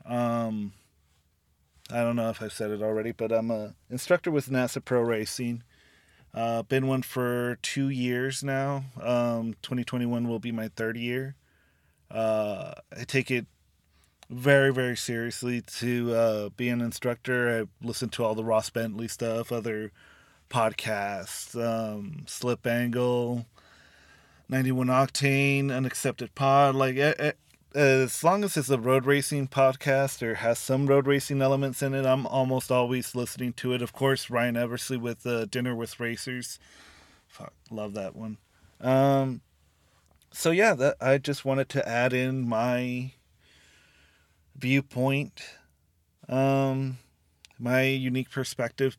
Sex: male